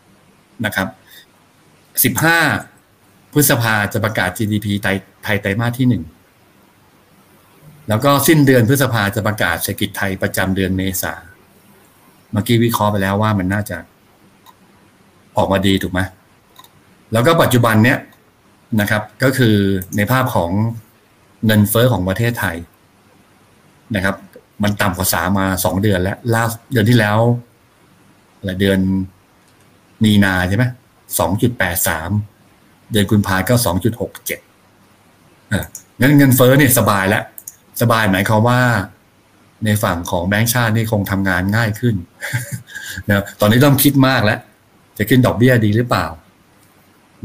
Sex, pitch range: male, 95-120 Hz